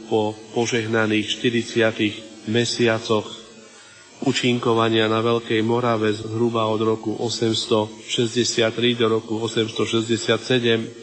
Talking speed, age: 80 wpm, 40-59